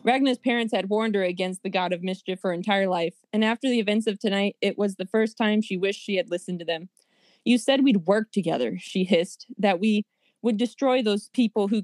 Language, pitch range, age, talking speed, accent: English, 190-235 Hz, 20-39, 230 wpm, American